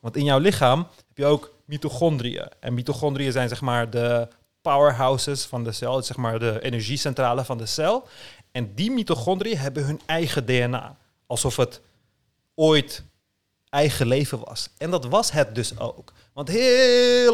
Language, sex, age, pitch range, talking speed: Dutch, male, 30-49, 120-150 Hz, 160 wpm